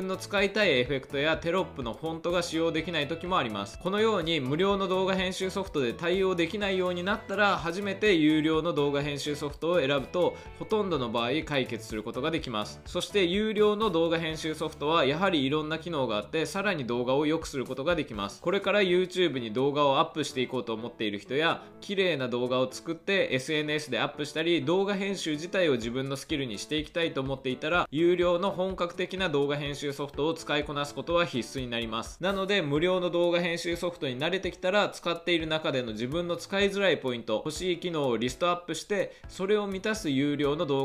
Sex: male